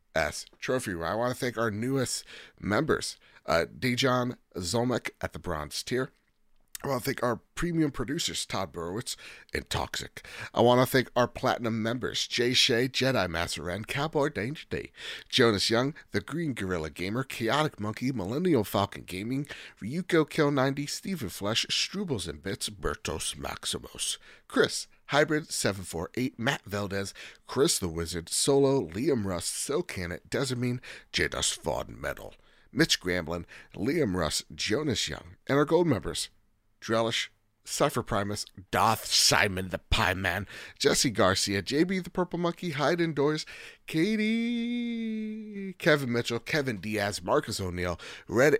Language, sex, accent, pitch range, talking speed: English, male, American, 100-145 Hz, 140 wpm